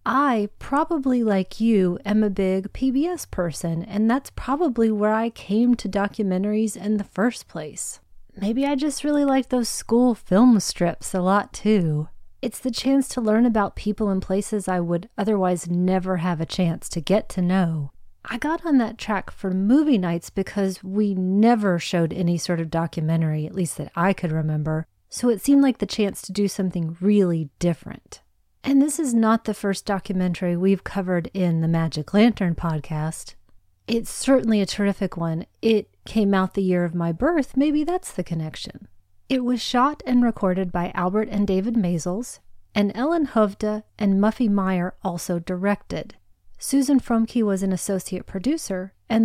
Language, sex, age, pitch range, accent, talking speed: English, female, 30-49, 180-230 Hz, American, 175 wpm